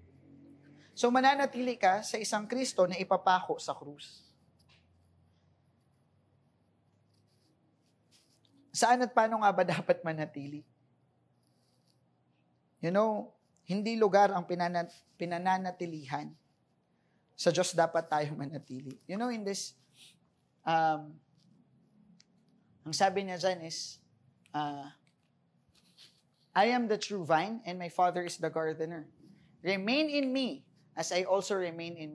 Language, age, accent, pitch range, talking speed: English, 20-39, Filipino, 150-190 Hz, 110 wpm